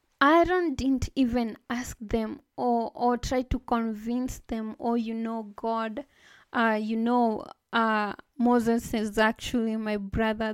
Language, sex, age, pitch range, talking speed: English, female, 20-39, 225-265 Hz, 135 wpm